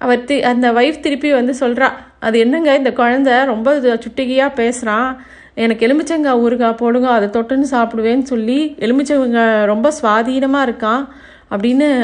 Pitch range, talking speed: 220-275 Hz, 135 wpm